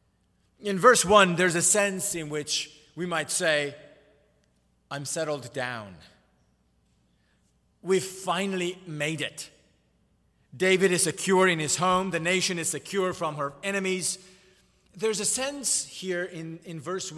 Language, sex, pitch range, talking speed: English, male, 125-200 Hz, 135 wpm